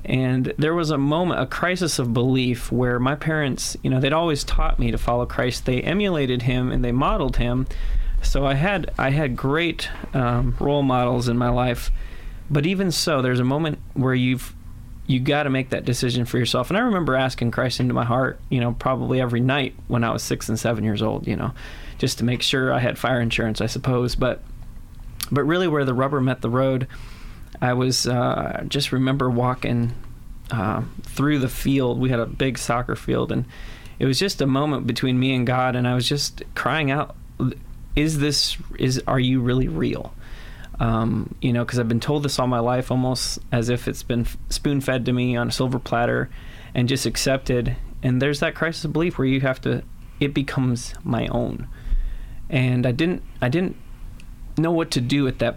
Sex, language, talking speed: male, English, 205 wpm